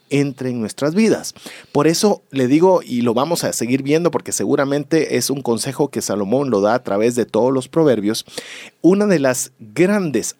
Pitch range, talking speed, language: 130-175 Hz, 190 wpm, Spanish